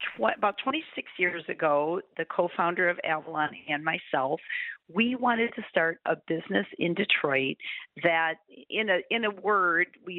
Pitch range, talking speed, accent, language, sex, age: 160-230 Hz, 145 wpm, American, English, female, 50-69